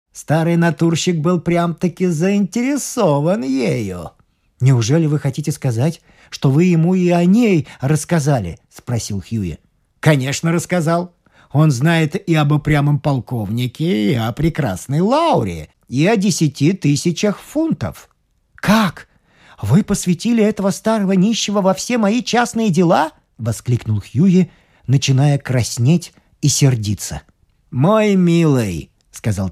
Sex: male